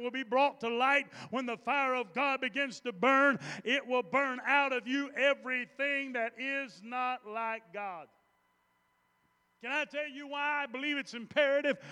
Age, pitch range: 40-59, 250-310 Hz